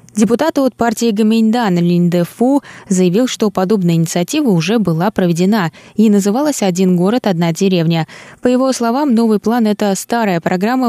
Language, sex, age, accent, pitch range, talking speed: Russian, female, 20-39, native, 175-220 Hz, 155 wpm